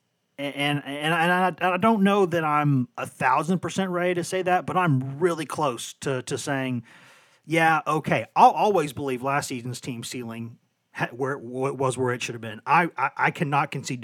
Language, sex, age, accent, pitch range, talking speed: English, male, 30-49, American, 130-165 Hz, 200 wpm